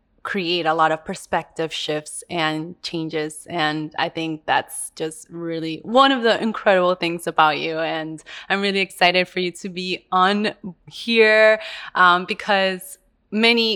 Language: English